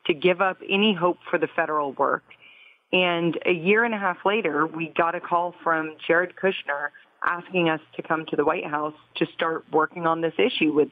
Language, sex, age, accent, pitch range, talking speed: English, female, 30-49, American, 150-185 Hz, 210 wpm